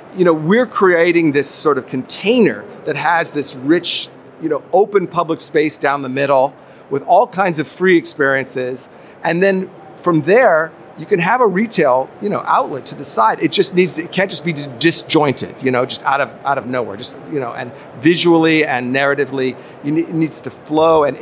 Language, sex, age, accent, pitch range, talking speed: English, male, 40-59, American, 135-170 Hz, 195 wpm